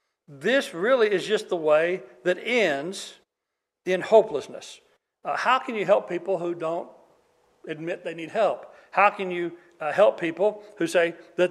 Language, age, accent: English, 60-79, American